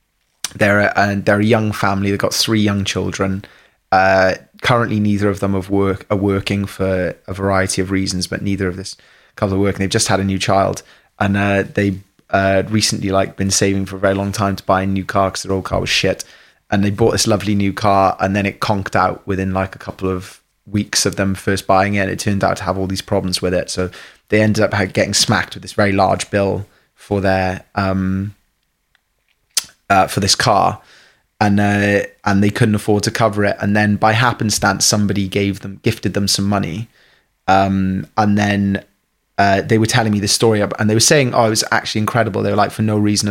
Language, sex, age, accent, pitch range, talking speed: English, male, 20-39, British, 95-110 Hz, 220 wpm